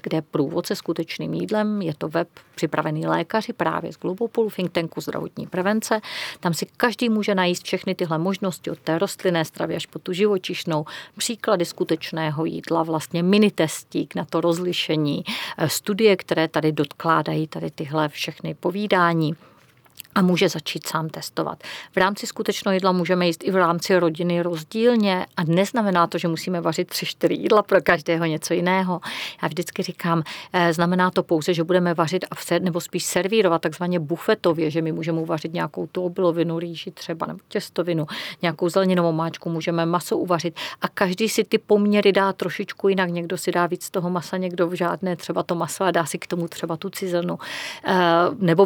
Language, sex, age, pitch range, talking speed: Czech, female, 40-59, 165-190 Hz, 170 wpm